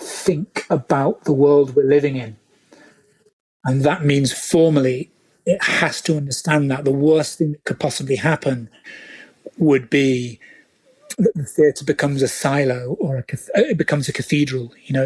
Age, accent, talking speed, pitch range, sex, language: 40-59, British, 160 wpm, 140-170 Hz, male, English